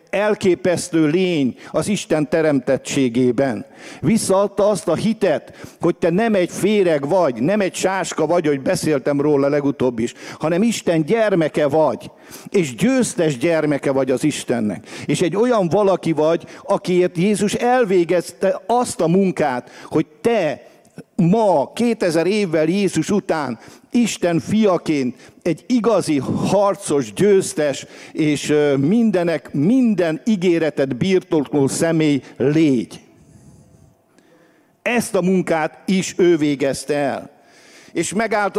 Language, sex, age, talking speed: English, male, 50-69, 115 wpm